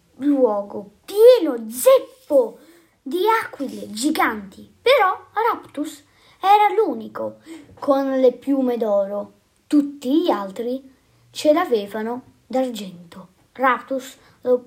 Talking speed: 90 wpm